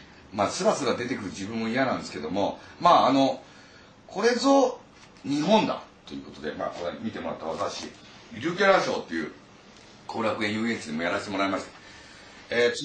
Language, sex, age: Japanese, male, 40-59